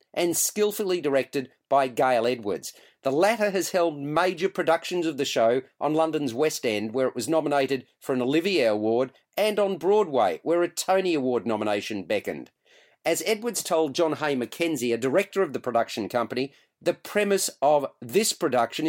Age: 40-59